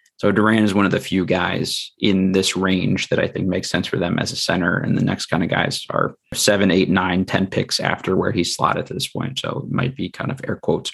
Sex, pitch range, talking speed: male, 95-105 Hz, 265 wpm